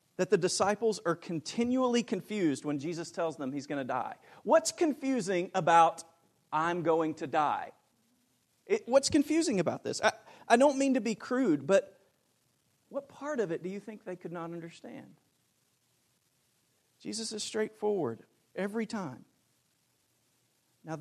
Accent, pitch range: American, 155-225 Hz